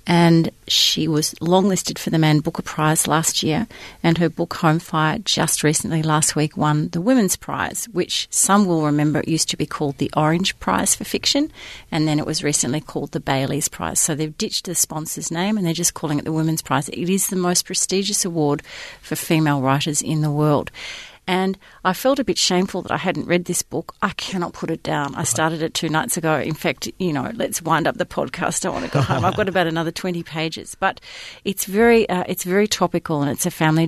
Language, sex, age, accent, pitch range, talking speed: English, female, 40-59, Australian, 150-180 Hz, 225 wpm